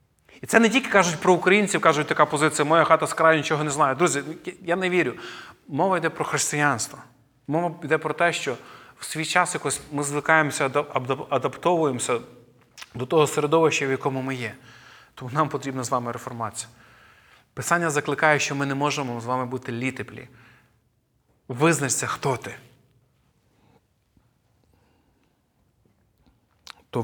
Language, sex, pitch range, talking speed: Ukrainian, male, 125-155 Hz, 140 wpm